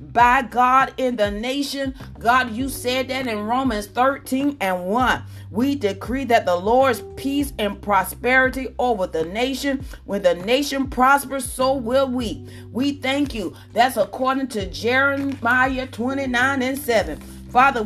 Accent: American